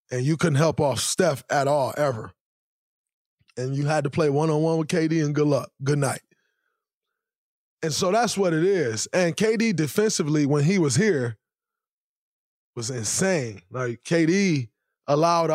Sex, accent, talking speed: male, American, 155 wpm